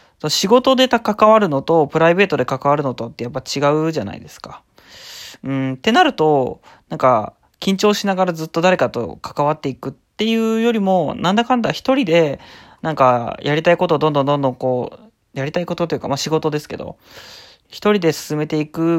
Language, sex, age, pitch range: Japanese, male, 20-39, 135-175 Hz